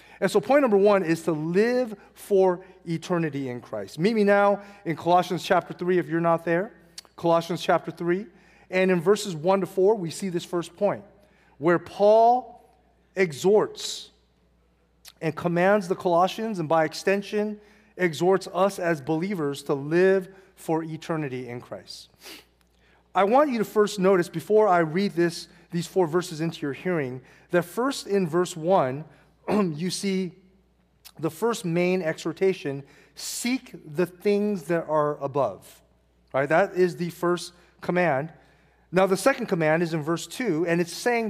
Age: 30-49